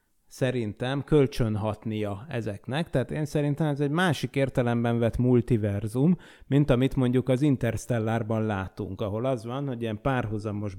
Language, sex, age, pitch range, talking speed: Hungarian, male, 30-49, 115-145 Hz, 135 wpm